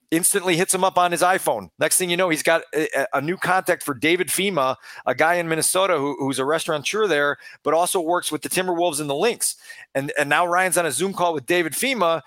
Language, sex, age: English, male, 40-59